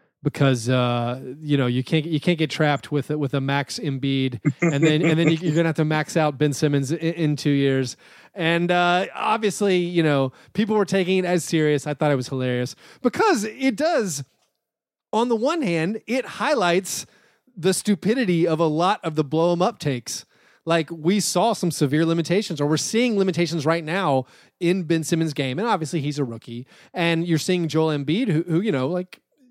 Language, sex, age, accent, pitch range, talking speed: English, male, 30-49, American, 150-195 Hz, 200 wpm